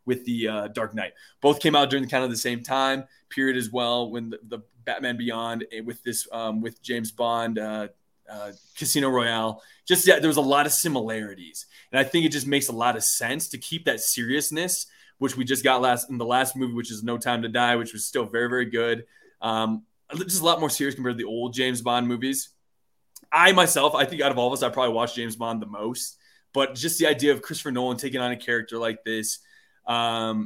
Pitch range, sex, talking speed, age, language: 115-140 Hz, male, 235 wpm, 20-39, English